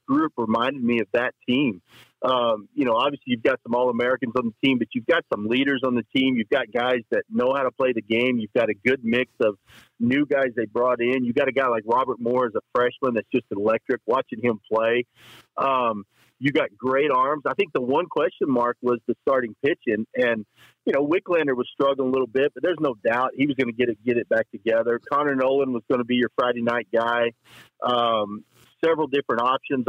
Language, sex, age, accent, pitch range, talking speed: English, male, 40-59, American, 115-135 Hz, 230 wpm